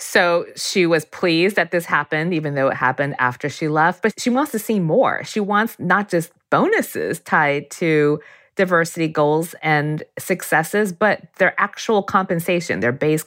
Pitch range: 145-190 Hz